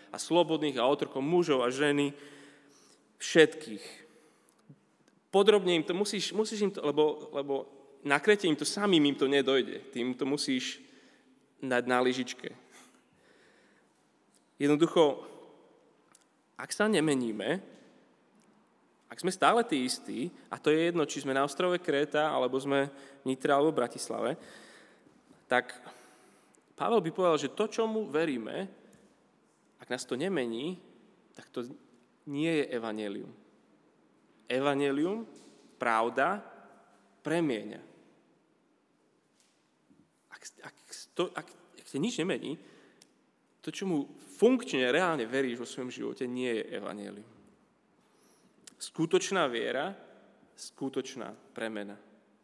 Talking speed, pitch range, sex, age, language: 110 wpm, 130-180 Hz, male, 20-39, Slovak